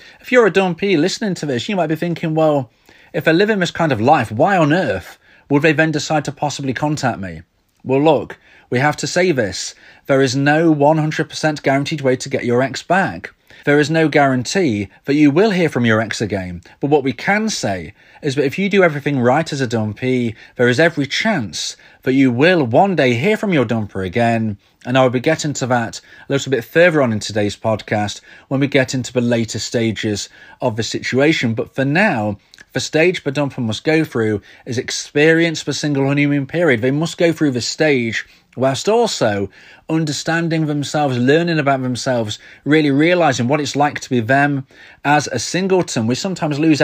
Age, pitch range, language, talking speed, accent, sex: 40-59, 120-160 Hz, English, 200 wpm, British, male